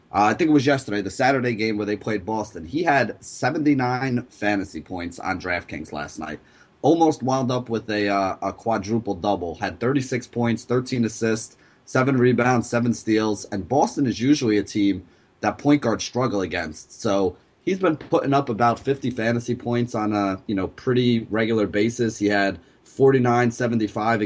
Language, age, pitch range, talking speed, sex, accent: English, 30-49, 100-115 Hz, 175 wpm, male, American